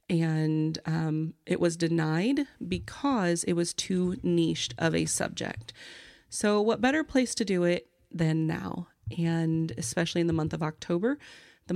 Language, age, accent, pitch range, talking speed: English, 30-49, American, 165-185 Hz, 155 wpm